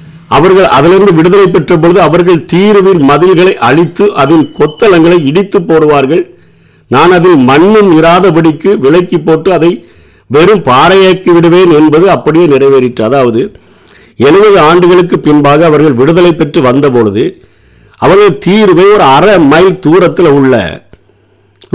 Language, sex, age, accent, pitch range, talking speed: Tamil, male, 50-69, native, 120-170 Hz, 105 wpm